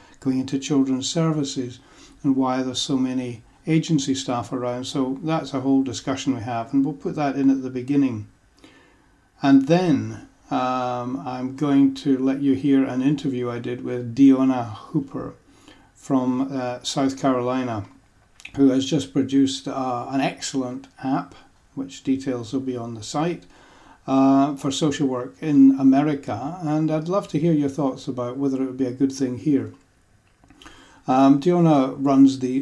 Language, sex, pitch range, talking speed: English, male, 125-140 Hz, 160 wpm